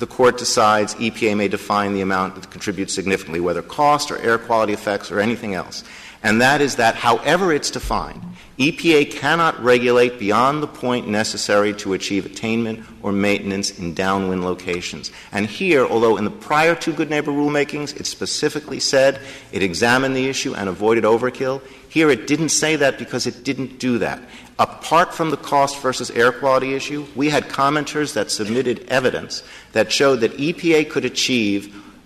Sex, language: male, English